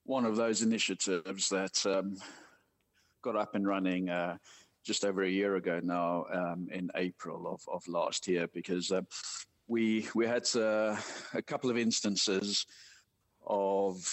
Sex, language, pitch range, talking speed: male, English, 90-110 Hz, 150 wpm